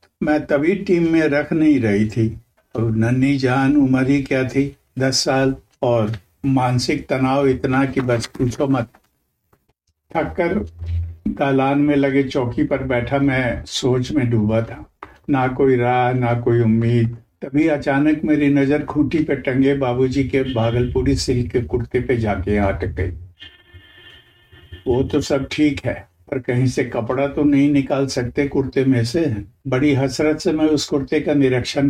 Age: 60-79